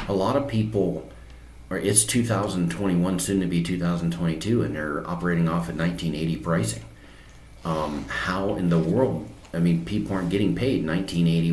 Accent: American